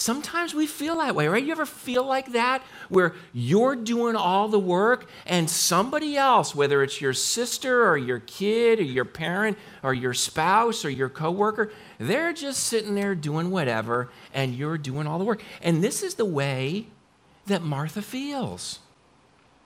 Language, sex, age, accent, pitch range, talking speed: English, male, 50-69, American, 120-190 Hz, 170 wpm